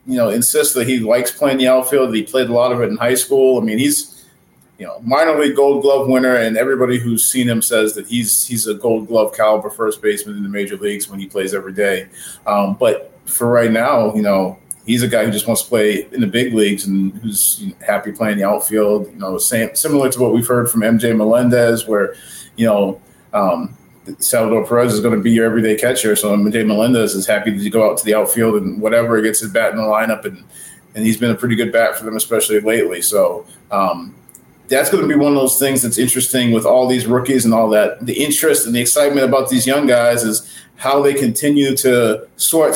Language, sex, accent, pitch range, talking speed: English, male, American, 110-130 Hz, 235 wpm